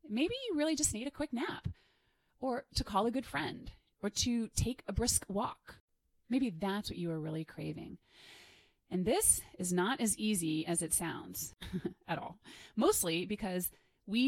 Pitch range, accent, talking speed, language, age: 175-225 Hz, American, 170 wpm, English, 30-49